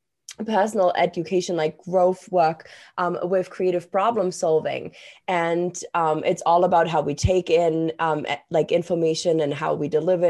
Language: English